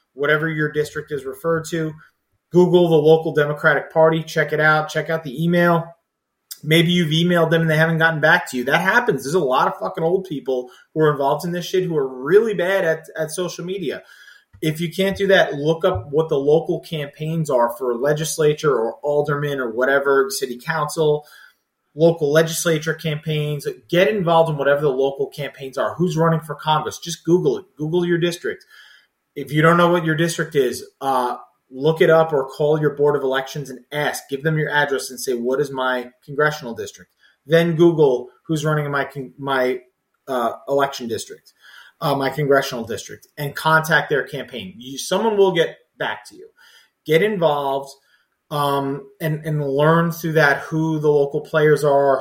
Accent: American